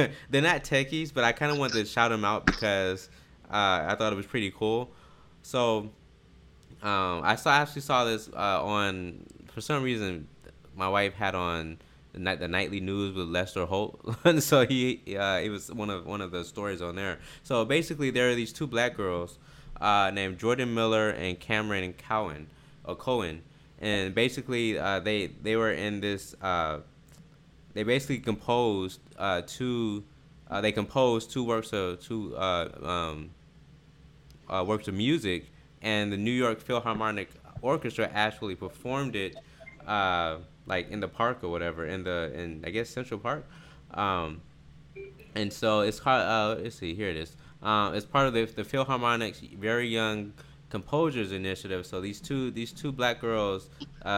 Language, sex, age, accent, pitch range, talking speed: English, male, 20-39, American, 95-120 Hz, 170 wpm